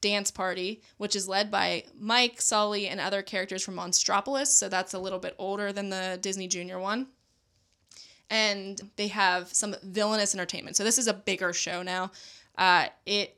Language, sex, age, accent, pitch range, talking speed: English, female, 20-39, American, 190-225 Hz, 175 wpm